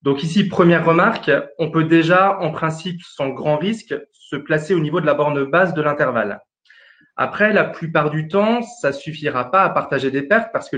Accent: French